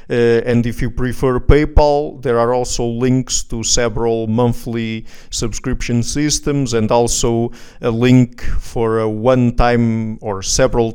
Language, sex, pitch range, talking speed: English, male, 120-145 Hz, 135 wpm